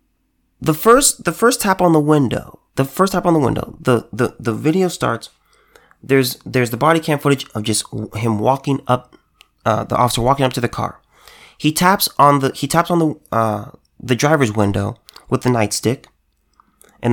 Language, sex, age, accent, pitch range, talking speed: English, male, 30-49, American, 120-155 Hz, 190 wpm